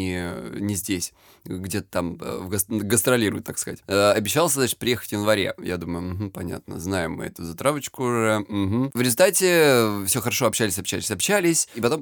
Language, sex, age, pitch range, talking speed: Russian, male, 20-39, 100-125 Hz, 165 wpm